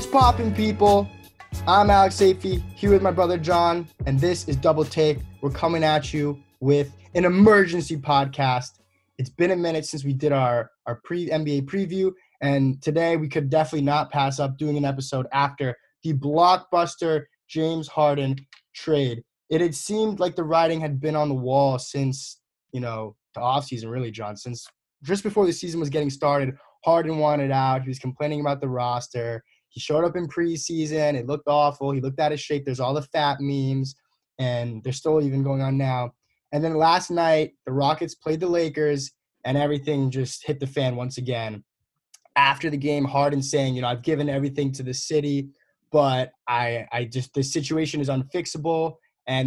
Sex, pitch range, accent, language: male, 130-160 Hz, American, English